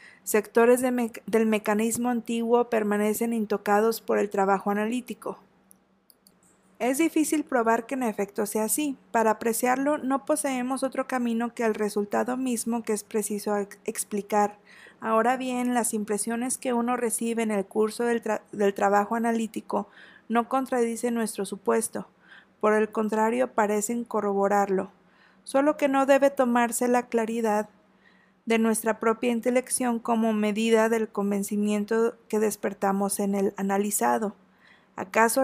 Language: Spanish